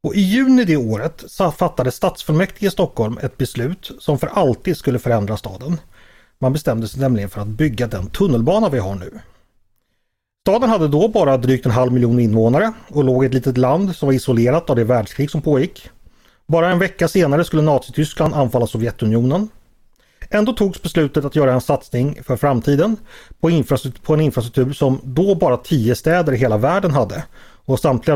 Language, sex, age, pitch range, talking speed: Swedish, male, 30-49, 120-170 Hz, 175 wpm